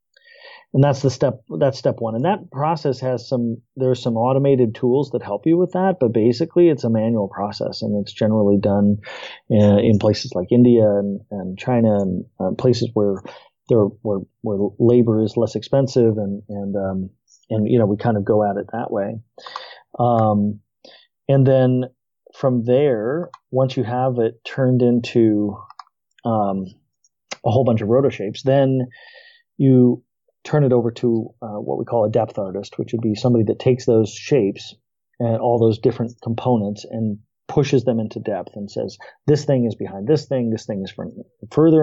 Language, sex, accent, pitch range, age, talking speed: English, male, American, 110-130 Hz, 40-59, 180 wpm